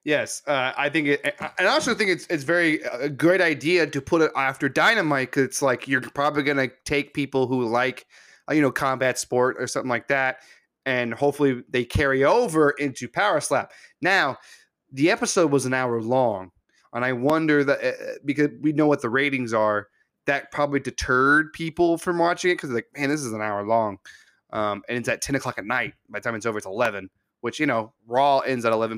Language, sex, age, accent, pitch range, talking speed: English, male, 20-39, American, 125-155 Hz, 215 wpm